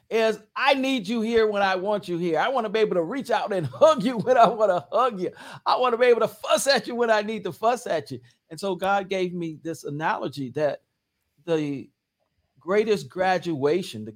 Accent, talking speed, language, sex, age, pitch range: American, 235 wpm, English, male, 50-69, 150-225 Hz